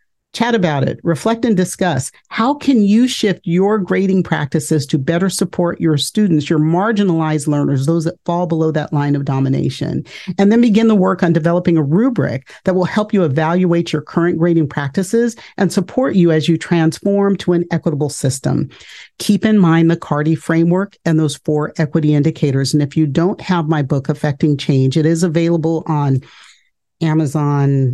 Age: 50-69